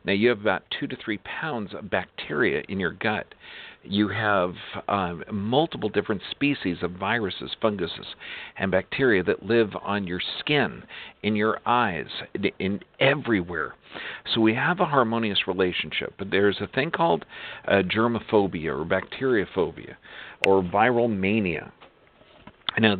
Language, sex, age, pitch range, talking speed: English, male, 50-69, 95-115 Hz, 140 wpm